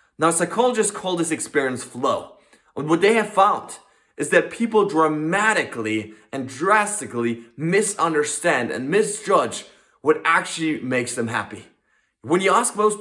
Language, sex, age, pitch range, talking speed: English, male, 20-39, 145-195 Hz, 135 wpm